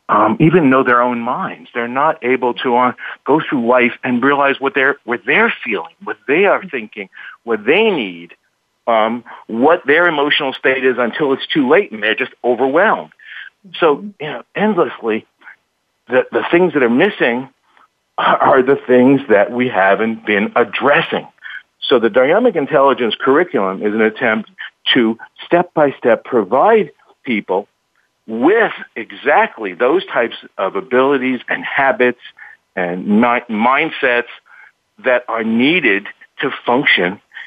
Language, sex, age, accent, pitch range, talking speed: English, male, 50-69, American, 115-145 Hz, 145 wpm